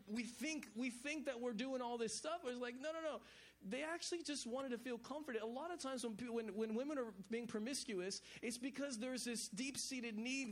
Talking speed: 230 wpm